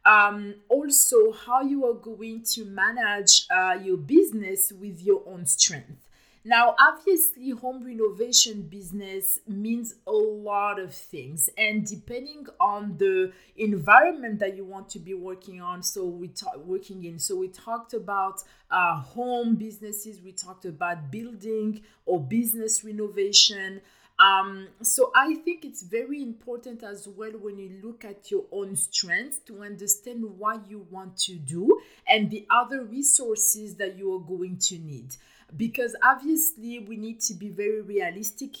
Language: English